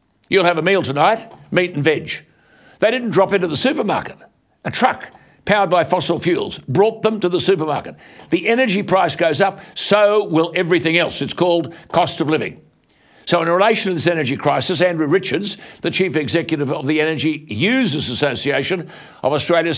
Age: 60-79